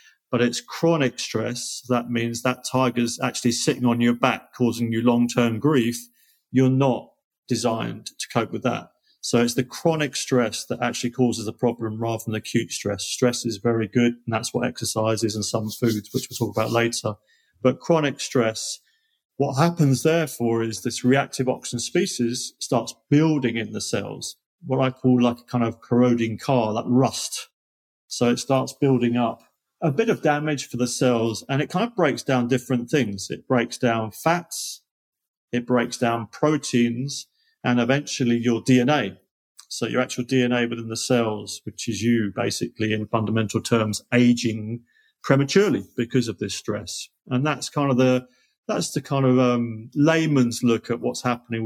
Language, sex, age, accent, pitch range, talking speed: English, male, 40-59, British, 115-130 Hz, 175 wpm